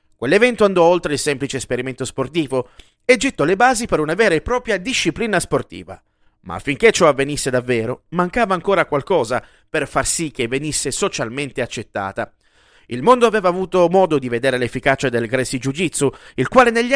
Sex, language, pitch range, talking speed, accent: male, Italian, 130-195 Hz, 170 wpm, native